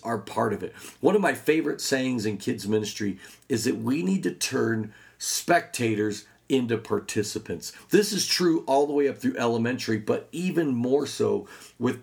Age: 40-59